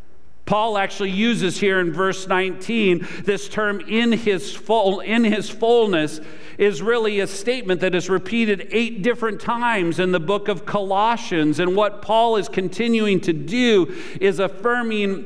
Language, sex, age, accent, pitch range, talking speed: English, male, 50-69, American, 180-220 Hz, 155 wpm